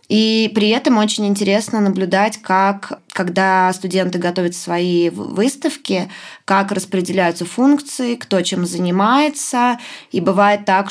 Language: Russian